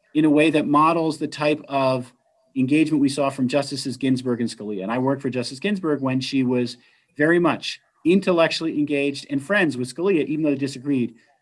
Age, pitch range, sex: 40-59, 140-185 Hz, male